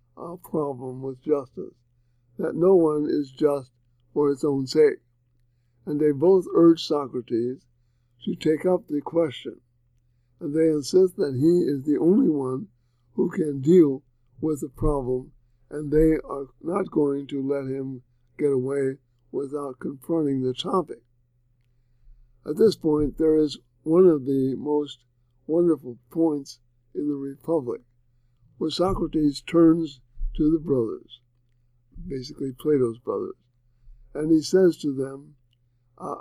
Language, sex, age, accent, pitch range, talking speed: English, male, 60-79, American, 120-155 Hz, 135 wpm